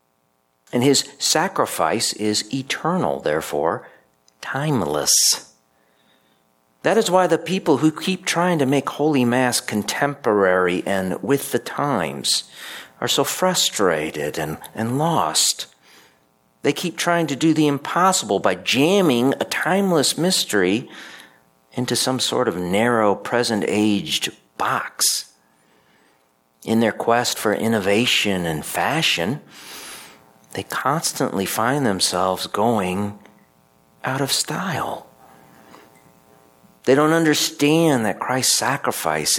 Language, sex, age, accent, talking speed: English, male, 50-69, American, 105 wpm